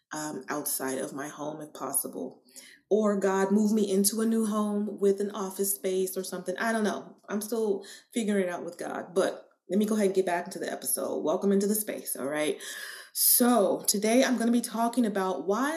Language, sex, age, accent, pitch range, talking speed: English, female, 20-39, American, 190-225 Hz, 215 wpm